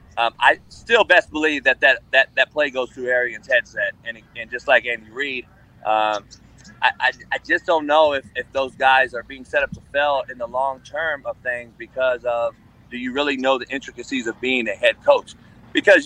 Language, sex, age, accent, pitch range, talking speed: English, male, 30-49, American, 125-175 Hz, 215 wpm